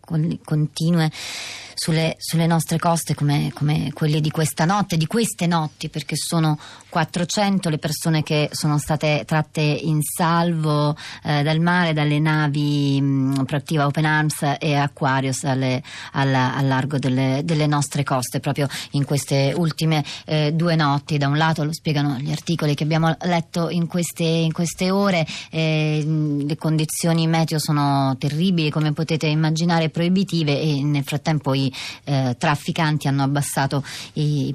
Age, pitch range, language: 30-49, 145-175 Hz, Italian